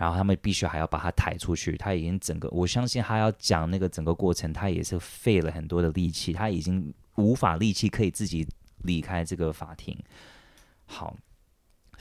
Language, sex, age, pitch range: Chinese, male, 20-39, 80-105 Hz